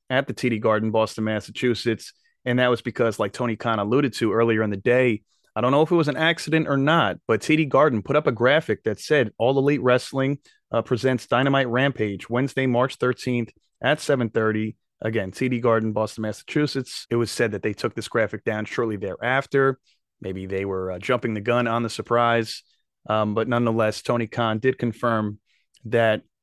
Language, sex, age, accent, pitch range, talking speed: English, male, 30-49, American, 110-130 Hz, 190 wpm